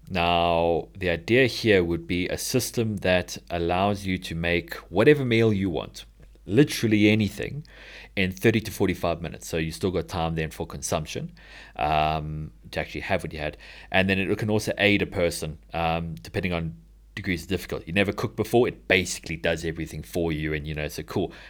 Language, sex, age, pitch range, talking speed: English, male, 30-49, 80-100 Hz, 190 wpm